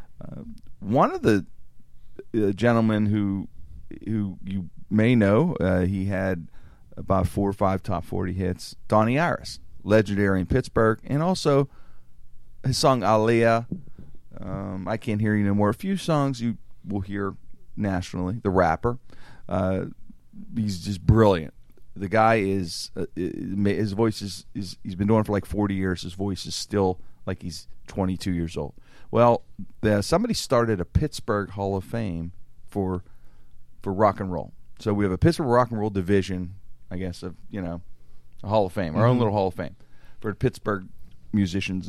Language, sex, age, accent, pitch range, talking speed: English, male, 40-59, American, 90-110 Hz, 170 wpm